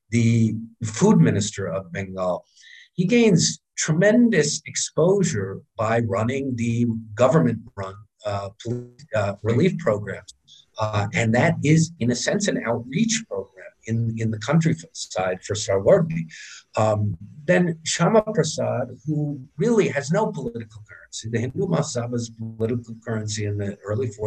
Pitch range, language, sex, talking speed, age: 105-155 Hz, Bengali, male, 130 wpm, 50-69